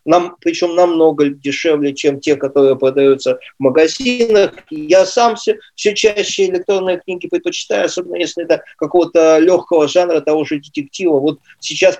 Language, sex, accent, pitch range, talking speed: Russian, male, native, 150-230 Hz, 145 wpm